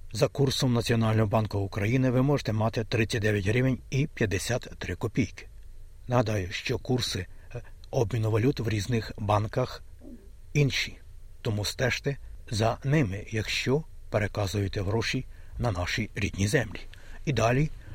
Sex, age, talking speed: male, 60-79, 115 wpm